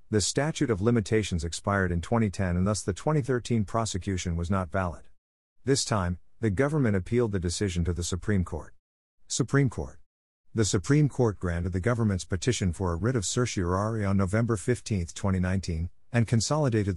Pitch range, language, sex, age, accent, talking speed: 90-115 Hz, English, male, 50-69, American, 165 wpm